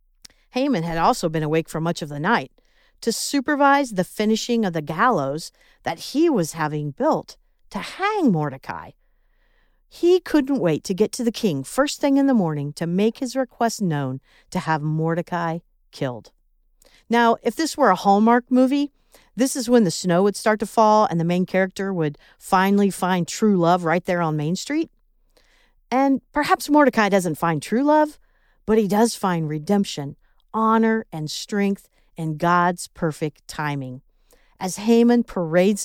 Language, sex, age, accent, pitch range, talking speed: English, female, 50-69, American, 165-235 Hz, 165 wpm